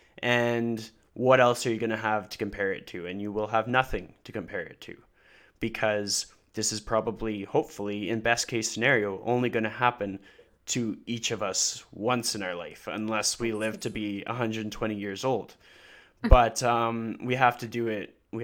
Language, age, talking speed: English, 20-39, 190 wpm